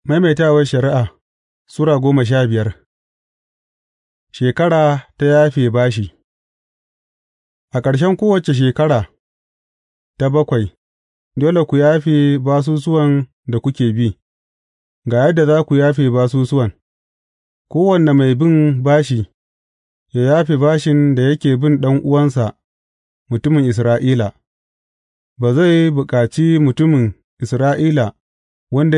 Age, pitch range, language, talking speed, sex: 30-49, 115-150 Hz, English, 90 wpm, male